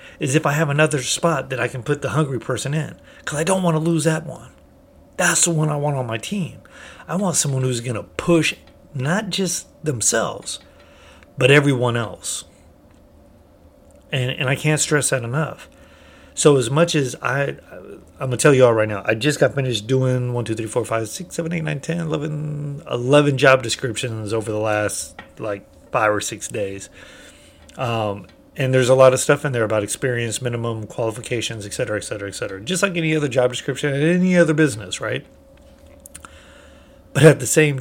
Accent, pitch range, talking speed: American, 110-150 Hz, 190 wpm